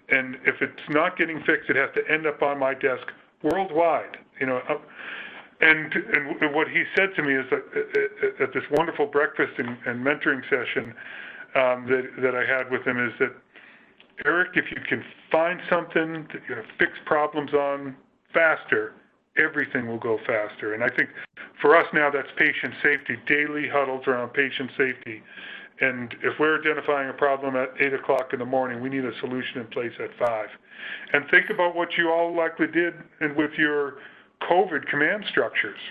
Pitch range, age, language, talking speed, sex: 130-165 Hz, 40-59, English, 180 wpm, female